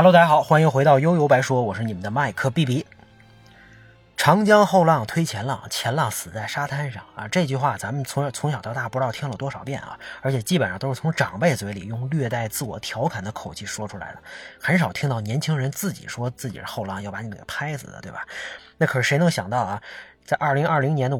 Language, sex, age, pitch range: Chinese, male, 20-39, 115-155 Hz